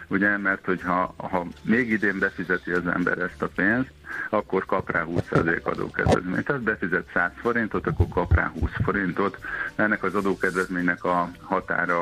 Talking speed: 155 wpm